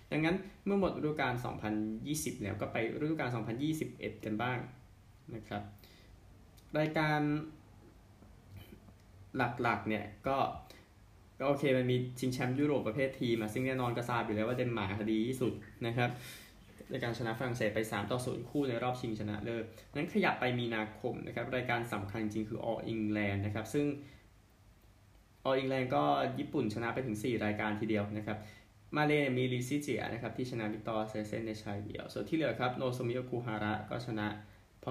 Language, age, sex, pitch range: Thai, 20-39, male, 105-130 Hz